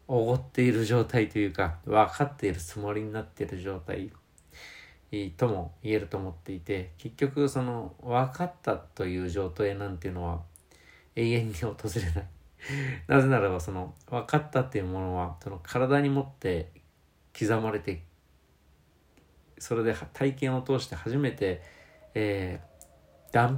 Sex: male